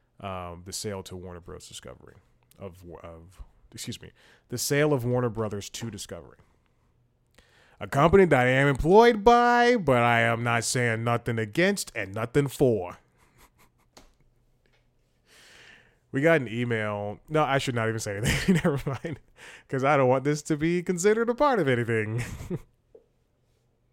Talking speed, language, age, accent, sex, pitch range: 150 wpm, English, 20-39, American, male, 100-130 Hz